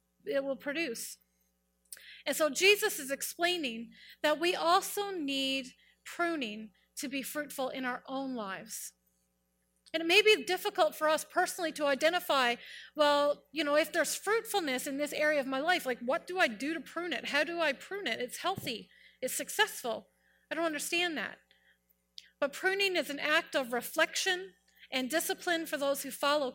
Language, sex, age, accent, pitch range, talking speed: English, female, 30-49, American, 250-330 Hz, 170 wpm